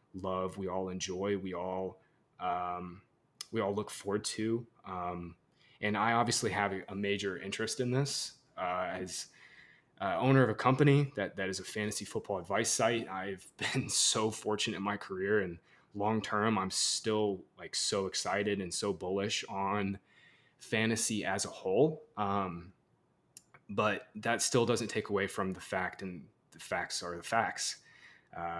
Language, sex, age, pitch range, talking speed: English, male, 20-39, 95-115 Hz, 160 wpm